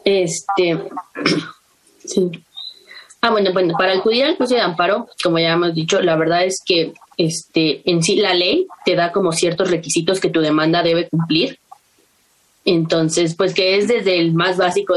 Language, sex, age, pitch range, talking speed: Spanish, female, 20-39, 165-195 Hz, 170 wpm